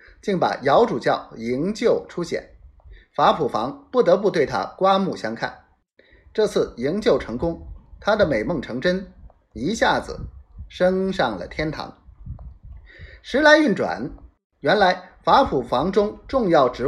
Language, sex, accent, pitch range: Chinese, male, native, 145-235 Hz